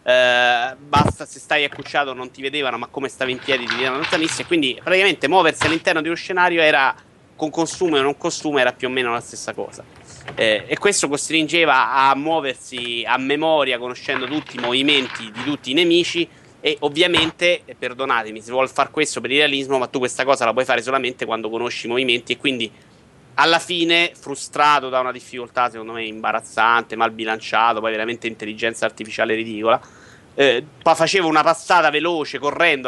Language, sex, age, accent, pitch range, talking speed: Italian, male, 30-49, native, 120-150 Hz, 180 wpm